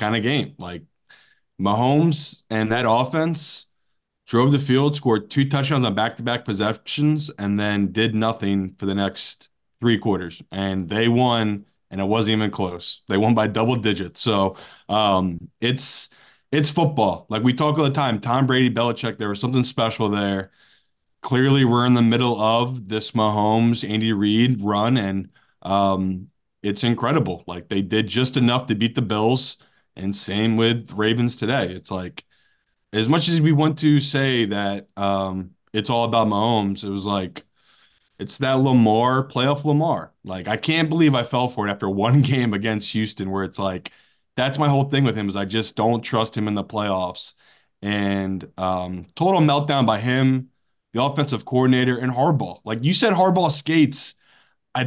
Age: 20-39